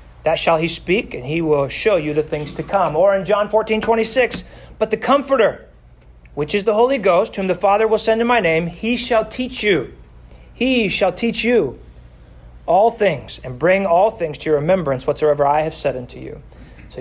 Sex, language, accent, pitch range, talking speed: male, English, American, 140-195 Hz, 205 wpm